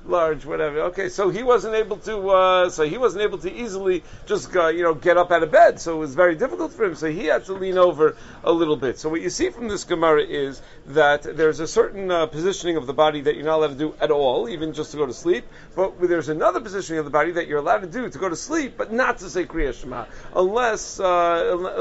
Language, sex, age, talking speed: English, male, 50-69, 260 wpm